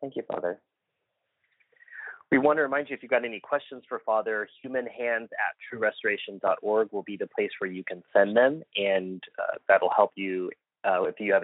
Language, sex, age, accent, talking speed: English, male, 30-49, American, 180 wpm